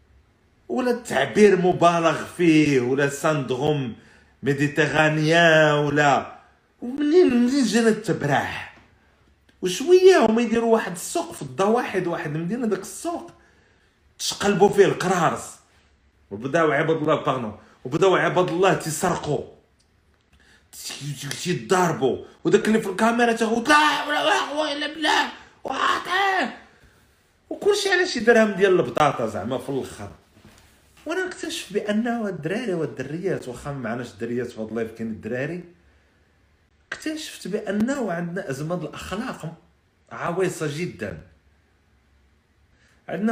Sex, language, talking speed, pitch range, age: male, Arabic, 90 wpm, 145-220 Hz, 40-59